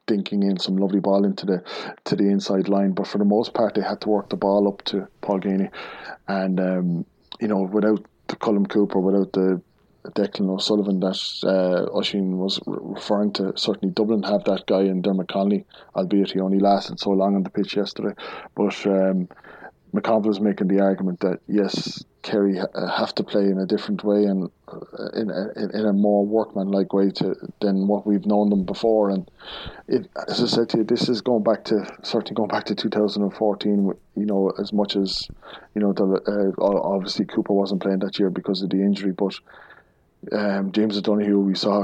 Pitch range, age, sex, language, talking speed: 95-105 Hz, 20-39, male, English, 195 wpm